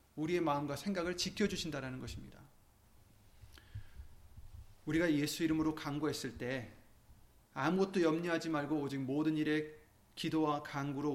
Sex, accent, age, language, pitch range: male, native, 30-49, Korean, 135-205 Hz